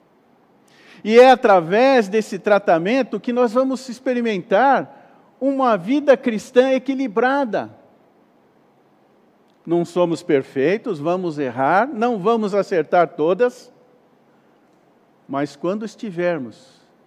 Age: 50-69